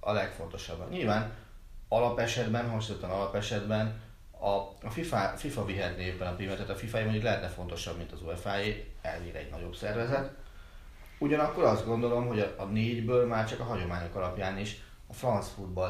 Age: 30-49